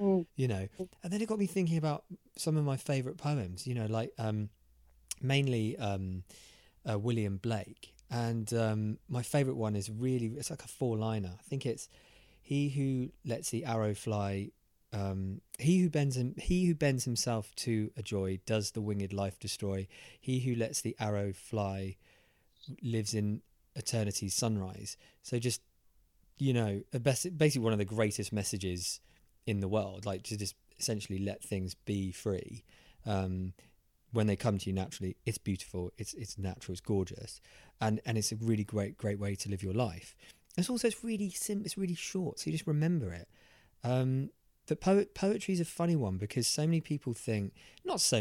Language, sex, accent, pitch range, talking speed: English, male, British, 100-130 Hz, 185 wpm